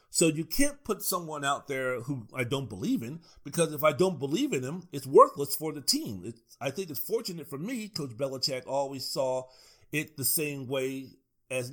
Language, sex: English, male